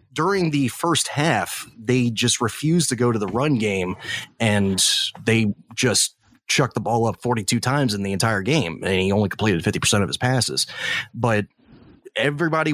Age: 30-49